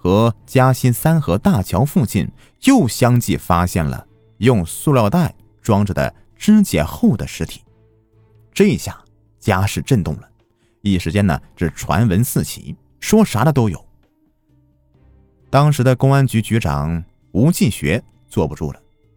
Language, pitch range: Chinese, 95-135 Hz